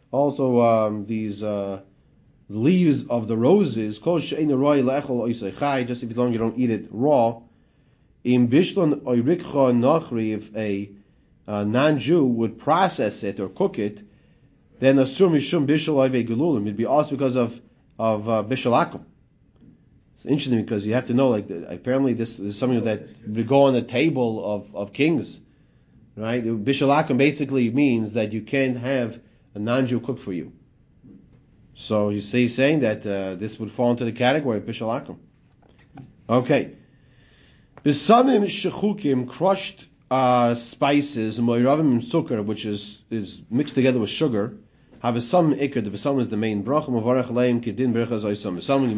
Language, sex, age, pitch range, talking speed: English, male, 30-49, 110-140 Hz, 135 wpm